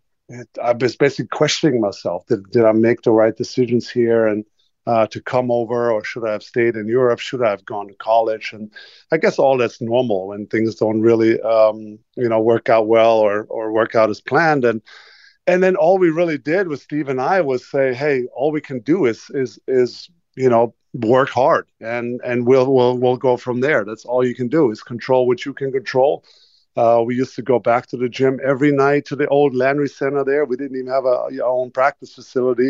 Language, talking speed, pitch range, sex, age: English, 225 wpm, 115-135 Hz, male, 50-69